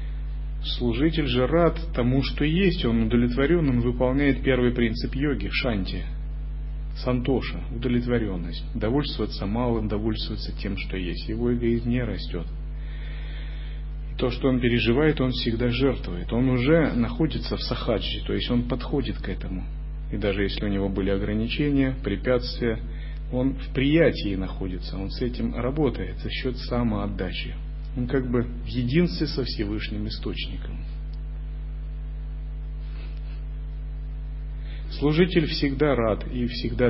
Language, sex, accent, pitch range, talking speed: Russian, male, native, 105-140 Hz, 125 wpm